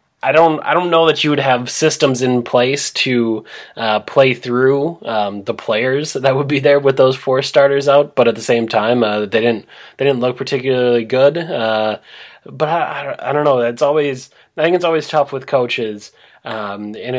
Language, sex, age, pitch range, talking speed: English, male, 20-39, 115-135 Hz, 210 wpm